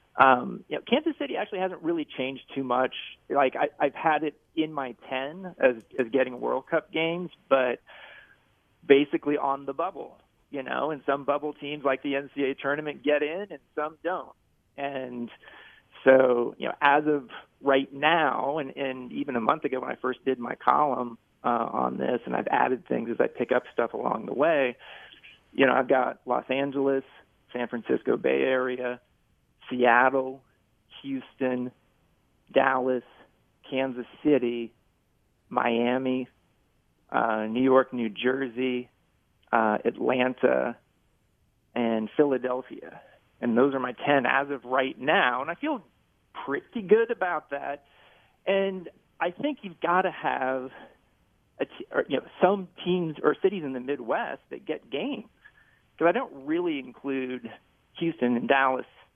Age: 40-59